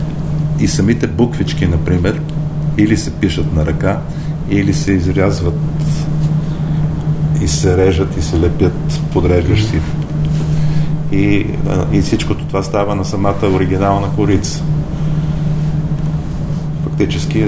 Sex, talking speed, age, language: male, 100 wpm, 40-59, Bulgarian